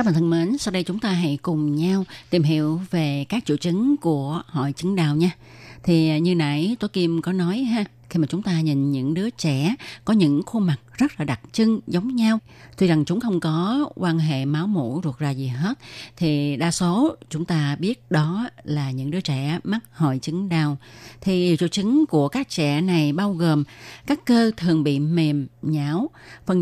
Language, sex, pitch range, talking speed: Vietnamese, female, 145-190 Hz, 205 wpm